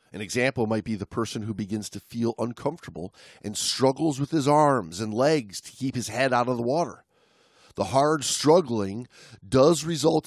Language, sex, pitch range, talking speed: English, male, 120-160 Hz, 180 wpm